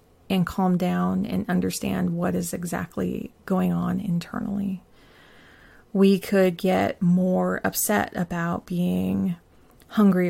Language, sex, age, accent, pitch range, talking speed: English, female, 30-49, American, 175-205 Hz, 110 wpm